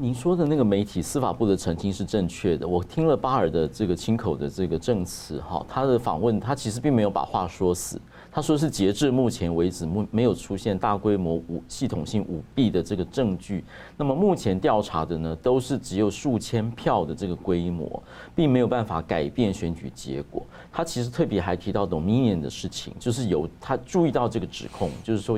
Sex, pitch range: male, 90-125 Hz